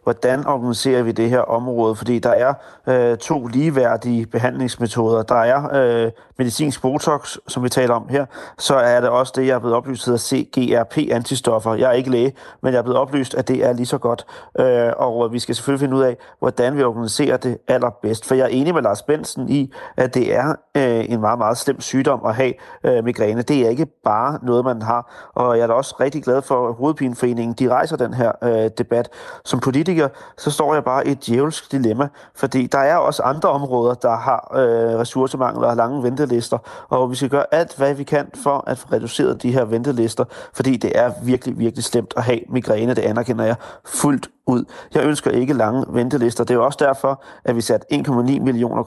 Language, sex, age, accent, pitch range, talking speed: Danish, male, 30-49, native, 120-135 Hz, 210 wpm